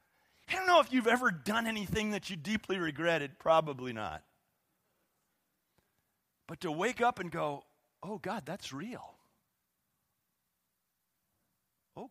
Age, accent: 40-59, American